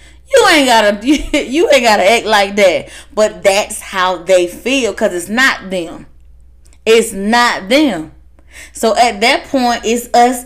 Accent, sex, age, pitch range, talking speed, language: American, female, 10-29, 205-305 Hz, 155 wpm, English